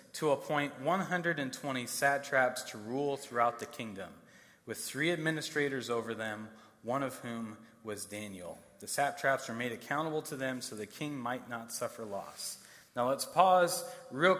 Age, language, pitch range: 30-49, English, 125-170 Hz